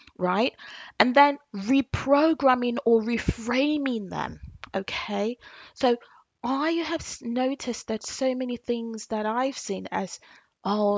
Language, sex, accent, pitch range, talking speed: English, female, British, 200-260 Hz, 115 wpm